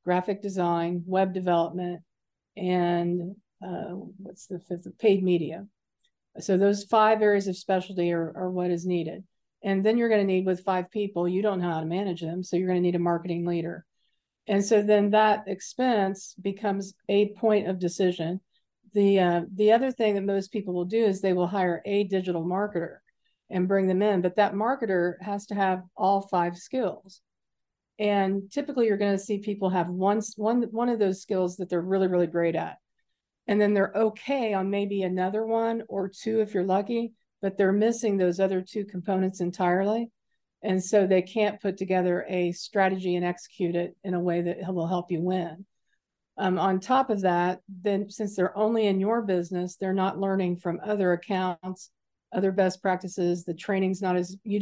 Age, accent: 50-69, American